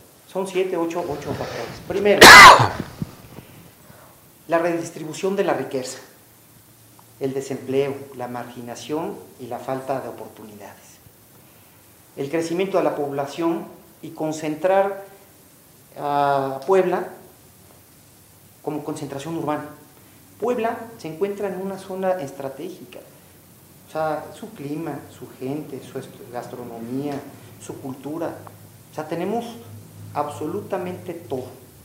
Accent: Mexican